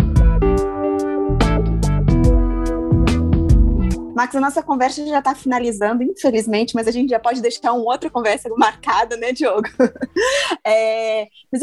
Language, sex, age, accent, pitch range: Portuguese, female, 20-39, Brazilian, 215-275 Hz